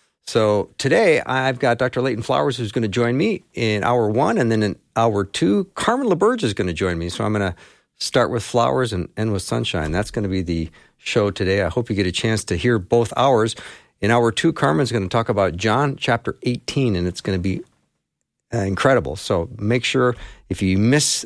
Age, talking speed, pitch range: 50-69, 220 wpm, 100-125 Hz